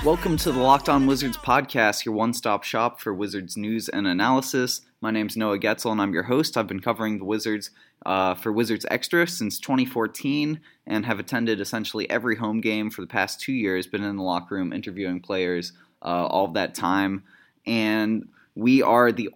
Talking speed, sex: 195 wpm, male